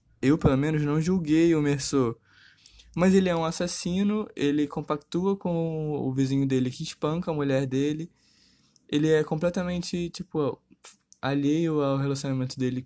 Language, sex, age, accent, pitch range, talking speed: Portuguese, male, 20-39, Brazilian, 135-170 Hz, 145 wpm